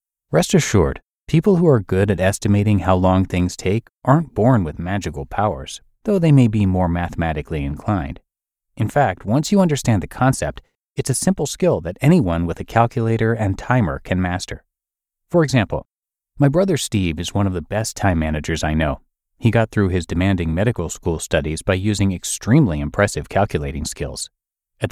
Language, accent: English, American